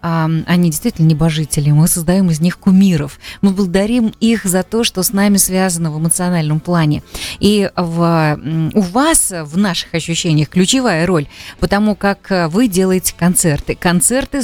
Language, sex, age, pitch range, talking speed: Russian, female, 20-39, 160-205 Hz, 150 wpm